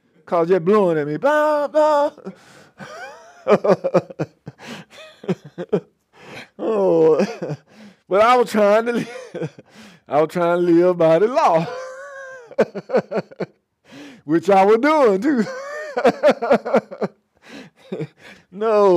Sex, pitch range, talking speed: male, 175-275 Hz, 90 wpm